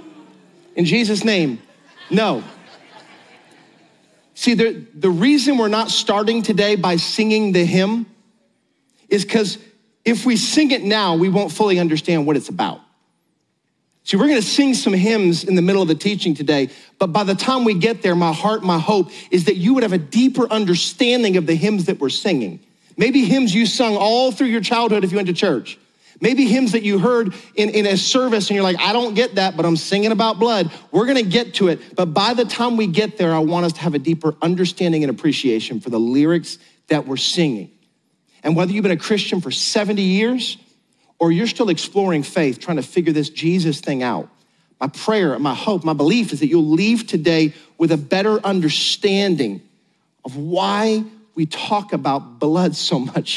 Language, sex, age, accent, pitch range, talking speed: English, male, 40-59, American, 170-220 Hz, 200 wpm